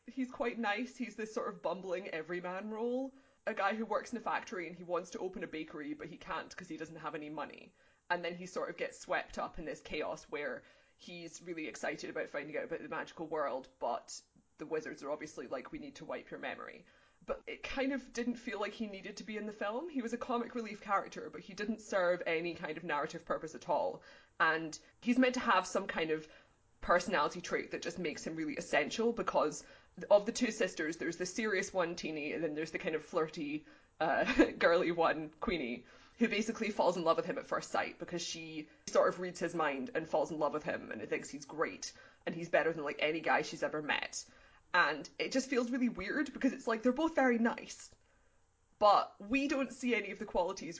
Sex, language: female, English